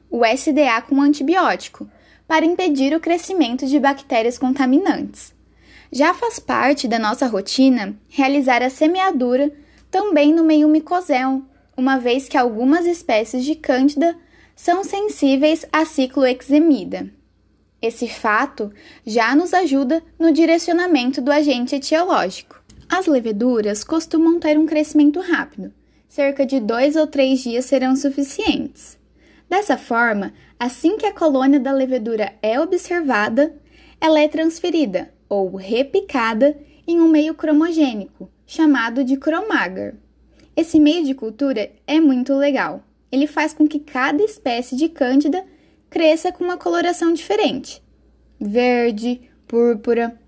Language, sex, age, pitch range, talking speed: Portuguese, female, 10-29, 255-325 Hz, 125 wpm